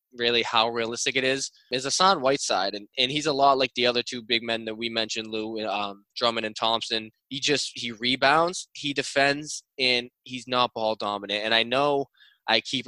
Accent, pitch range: American, 110-125 Hz